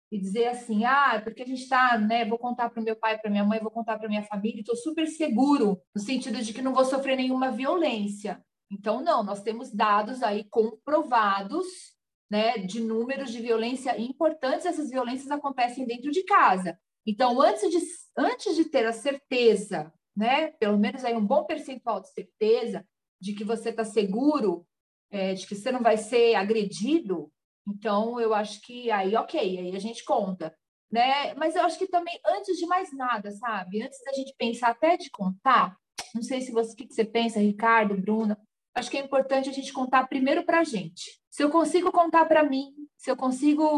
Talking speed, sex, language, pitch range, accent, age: 195 wpm, female, Portuguese, 220-295 Hz, Brazilian, 40-59